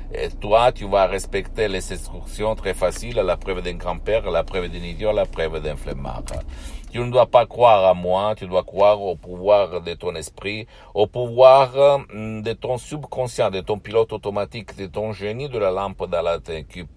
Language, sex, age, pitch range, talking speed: Italian, male, 60-79, 85-105 Hz, 185 wpm